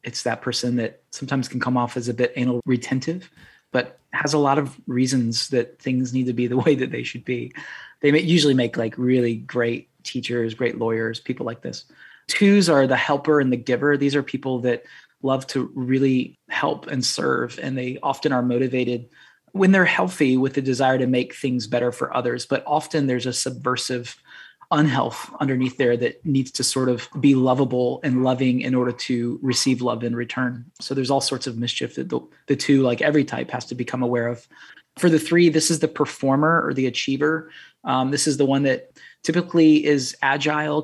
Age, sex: 20-39, male